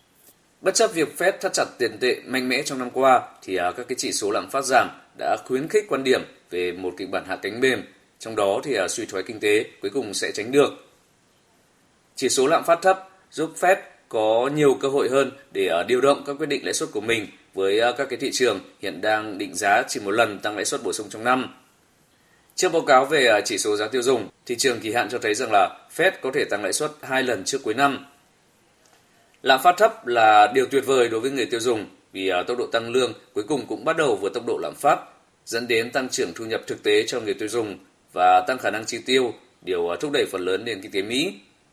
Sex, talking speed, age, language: male, 240 wpm, 20-39, Vietnamese